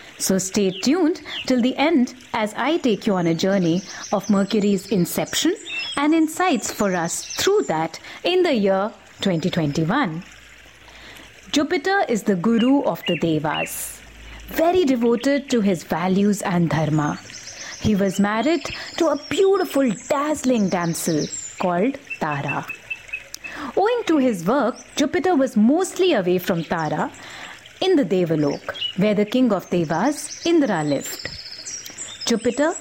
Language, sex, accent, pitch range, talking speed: English, female, Indian, 190-305 Hz, 130 wpm